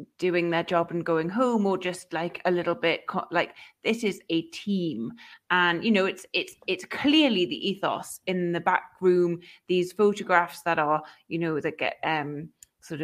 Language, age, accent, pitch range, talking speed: English, 30-49, British, 170-205 Hz, 185 wpm